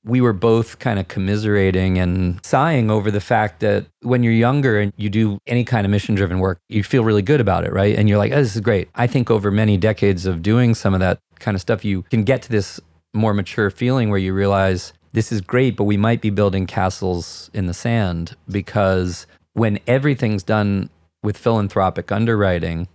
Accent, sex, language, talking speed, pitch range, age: American, male, English, 210 wpm, 95-115 Hz, 30-49